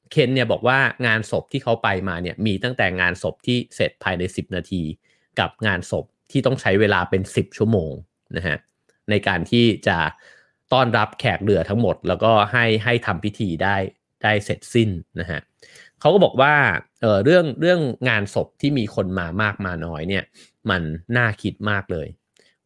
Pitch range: 90-120 Hz